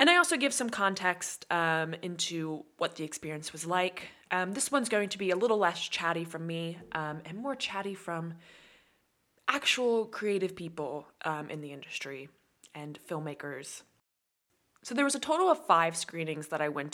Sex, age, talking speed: female, 20-39, 175 wpm